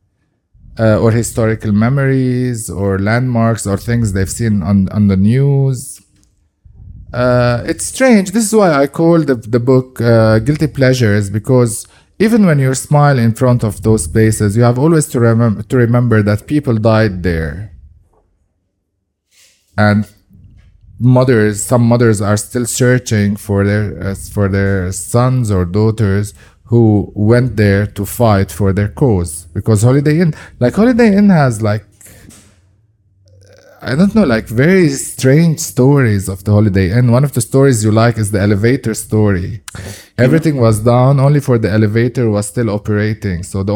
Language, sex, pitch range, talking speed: English, male, 100-125 Hz, 155 wpm